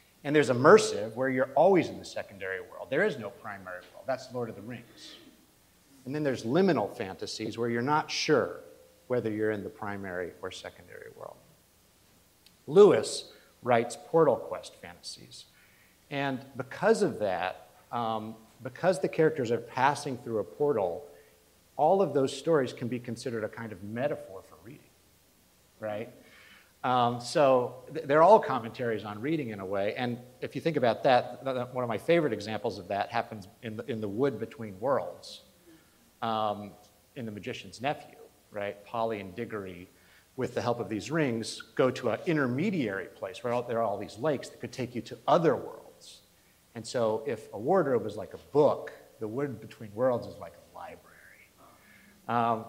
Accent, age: American, 50-69